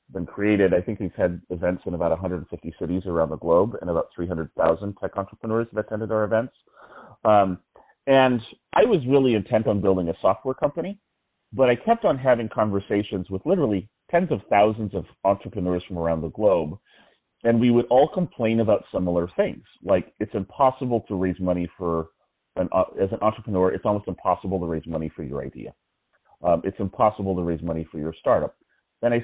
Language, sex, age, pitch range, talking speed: English, male, 30-49, 85-110 Hz, 185 wpm